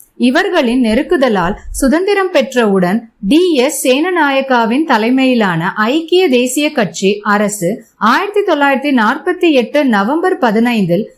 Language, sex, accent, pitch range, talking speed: Tamil, female, native, 225-315 Hz, 95 wpm